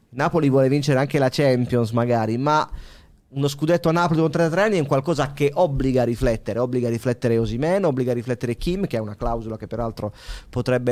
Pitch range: 125-165 Hz